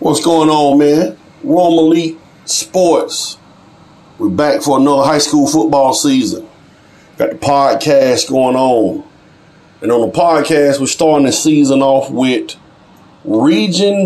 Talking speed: 130 wpm